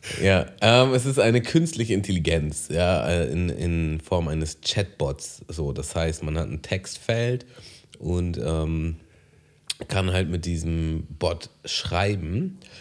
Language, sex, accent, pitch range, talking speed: German, male, German, 80-100 Hz, 130 wpm